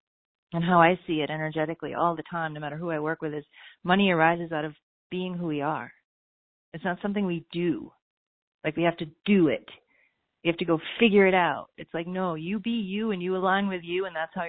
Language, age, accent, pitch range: English, 40-59, American, 165-200 Hz